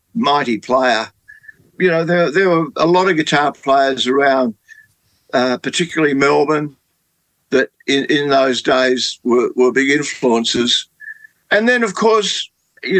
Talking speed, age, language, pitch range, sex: 140 wpm, 60-79, English, 130-160 Hz, male